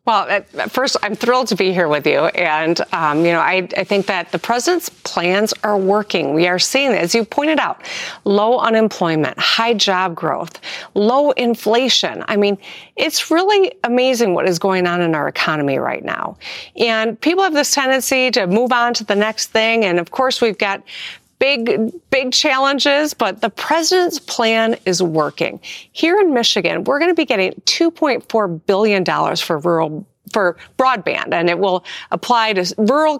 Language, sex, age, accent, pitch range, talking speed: English, female, 40-59, American, 180-255 Hz, 175 wpm